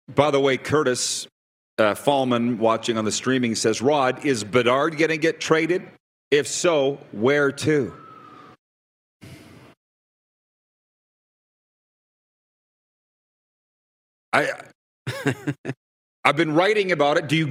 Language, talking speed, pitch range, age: English, 105 wpm, 130-190 Hz, 40-59